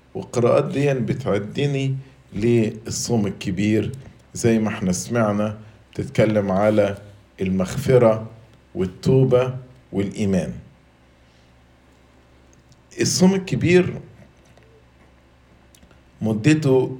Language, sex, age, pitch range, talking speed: English, male, 50-69, 90-135 Hz, 65 wpm